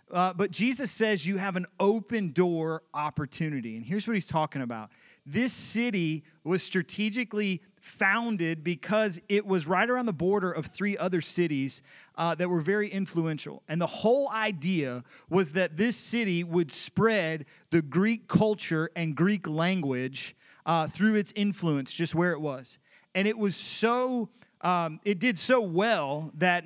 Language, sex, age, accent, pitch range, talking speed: English, male, 30-49, American, 165-210 Hz, 160 wpm